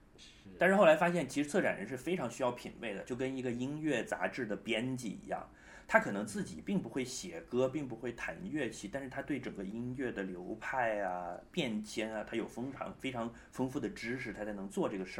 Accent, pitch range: native, 100-130 Hz